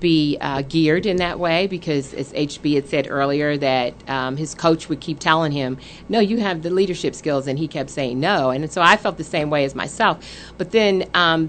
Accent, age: American, 50-69